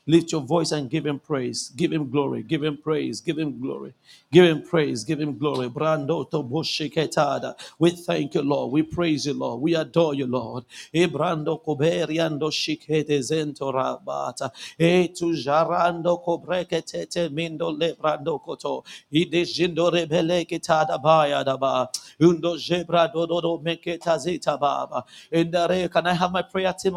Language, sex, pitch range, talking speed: English, male, 155-180 Hz, 140 wpm